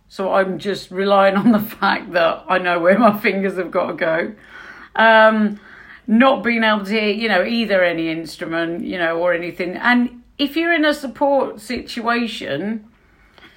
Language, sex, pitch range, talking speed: English, female, 195-260 Hz, 170 wpm